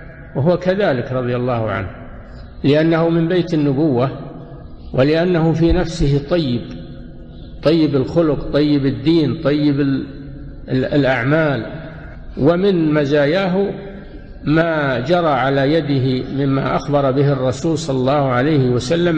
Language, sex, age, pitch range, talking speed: Arabic, male, 50-69, 130-160 Hz, 105 wpm